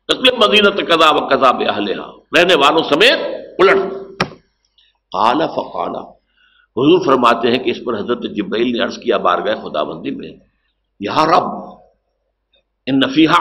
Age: 60-79